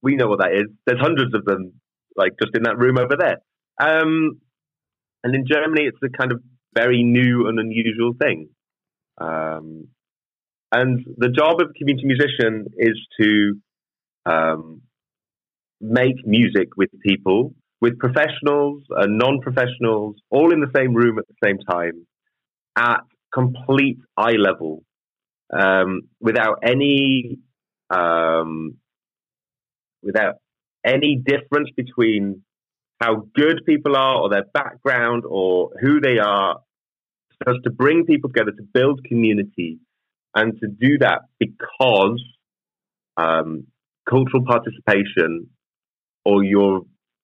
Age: 30-49